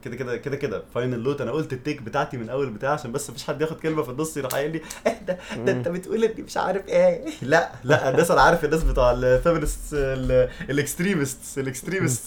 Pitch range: 110-145 Hz